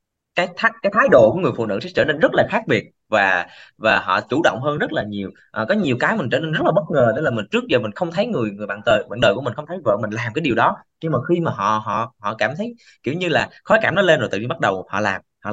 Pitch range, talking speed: 105-160 Hz, 325 wpm